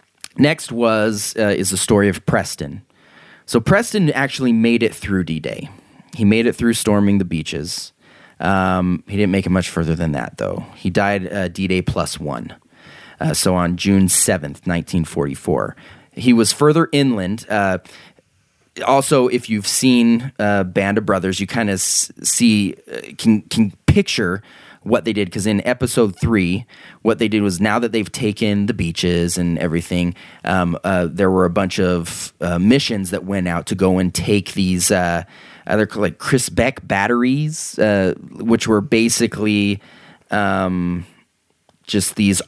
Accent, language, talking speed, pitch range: American, English, 160 wpm, 90-115 Hz